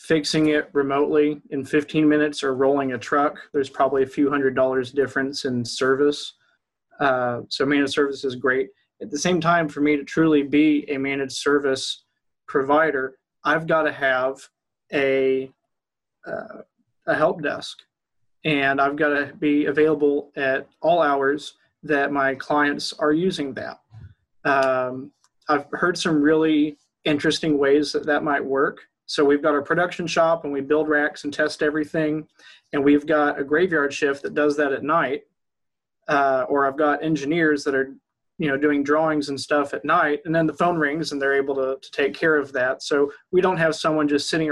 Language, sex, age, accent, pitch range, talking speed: English, male, 30-49, American, 140-155 Hz, 180 wpm